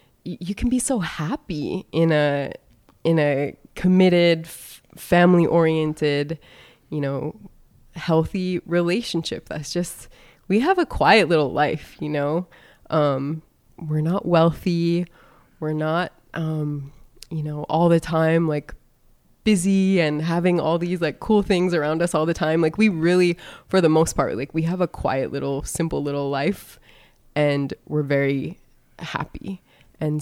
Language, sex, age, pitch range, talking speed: English, female, 20-39, 150-175 Hz, 145 wpm